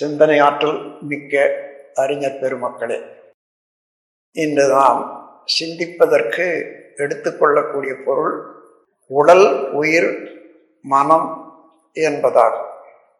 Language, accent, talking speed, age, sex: Tamil, native, 60 wpm, 60-79, male